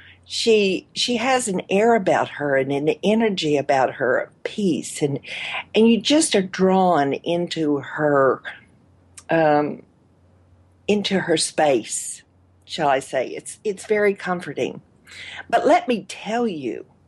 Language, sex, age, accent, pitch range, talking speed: English, female, 50-69, American, 150-220 Hz, 135 wpm